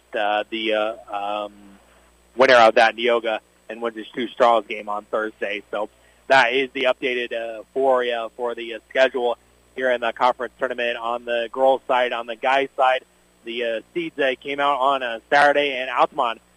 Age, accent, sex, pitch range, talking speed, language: 30-49, American, male, 110-125 Hz, 185 wpm, English